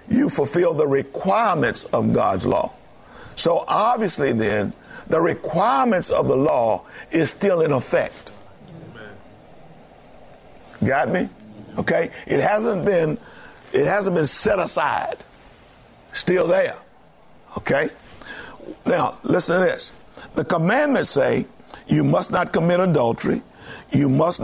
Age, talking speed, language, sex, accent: 50-69, 115 wpm, English, male, American